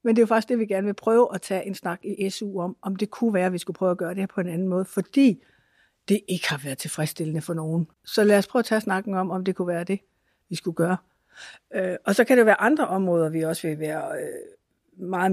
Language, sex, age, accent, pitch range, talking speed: Danish, female, 60-79, native, 175-215 Hz, 275 wpm